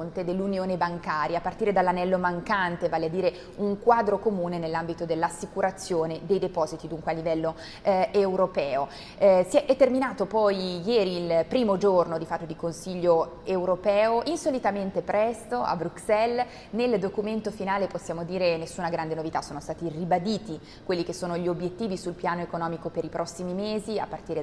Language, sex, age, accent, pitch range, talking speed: Italian, female, 20-39, native, 165-200 Hz, 160 wpm